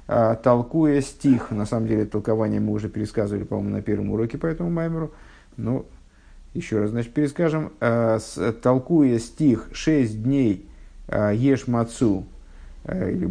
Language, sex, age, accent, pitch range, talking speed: Russian, male, 50-69, native, 105-145 Hz, 125 wpm